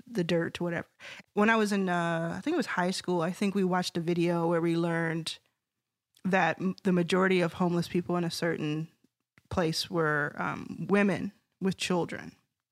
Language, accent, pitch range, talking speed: English, American, 170-205 Hz, 190 wpm